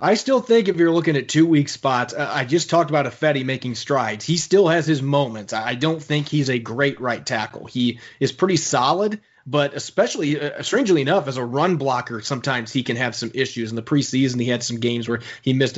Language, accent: English, American